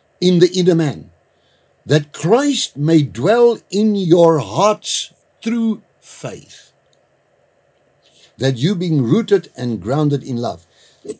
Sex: male